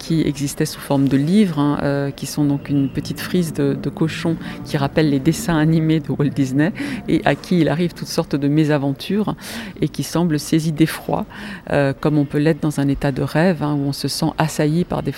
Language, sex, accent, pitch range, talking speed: French, female, French, 145-165 Hz, 225 wpm